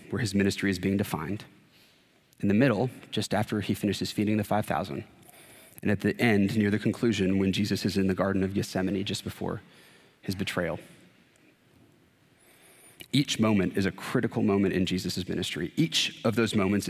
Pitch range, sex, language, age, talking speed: 95-115 Hz, male, English, 30-49, 170 wpm